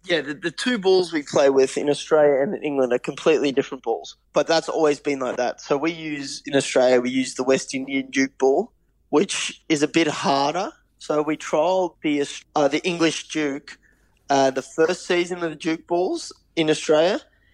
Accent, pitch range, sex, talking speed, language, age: Australian, 130-155 Hz, male, 200 wpm, English, 20-39